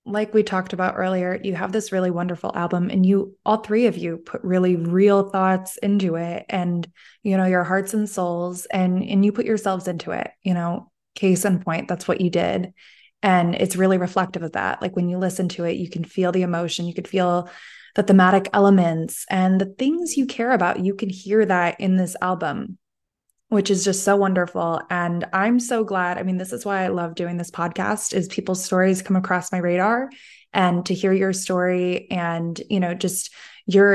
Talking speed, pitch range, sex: 210 wpm, 180-200 Hz, female